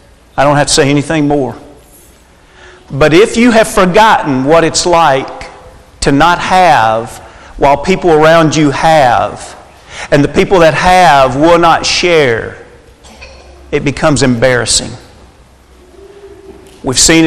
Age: 50-69